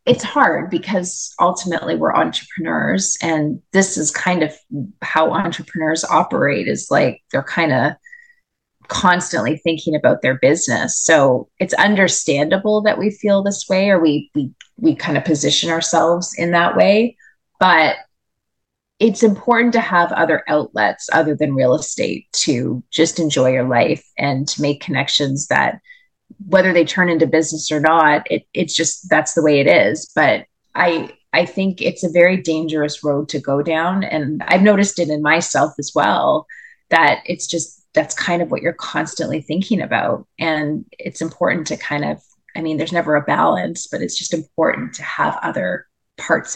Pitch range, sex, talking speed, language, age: 155-200 Hz, female, 165 wpm, English, 30-49